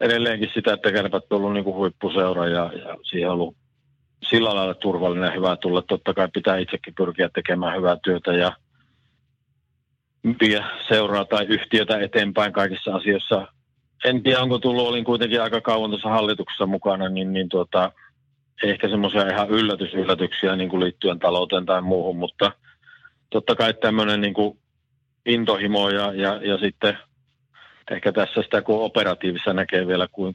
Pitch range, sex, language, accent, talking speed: 90-110 Hz, male, Finnish, native, 150 wpm